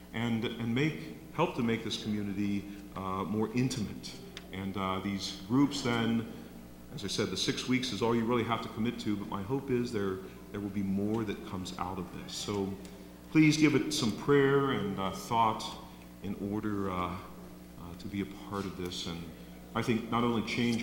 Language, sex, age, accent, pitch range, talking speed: English, male, 50-69, American, 90-115 Hz, 195 wpm